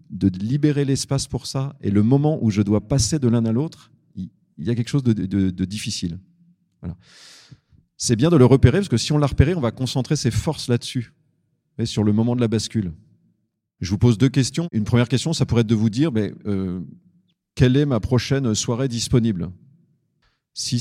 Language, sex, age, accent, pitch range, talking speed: French, male, 40-59, French, 105-135 Hz, 210 wpm